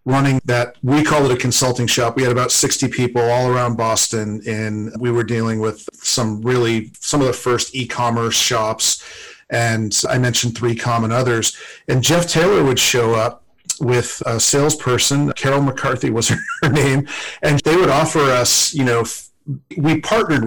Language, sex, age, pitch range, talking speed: English, male, 40-59, 115-135 Hz, 175 wpm